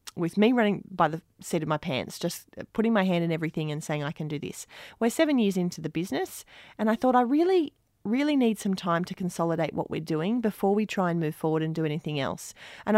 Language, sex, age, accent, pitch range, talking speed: English, female, 30-49, Australian, 155-190 Hz, 240 wpm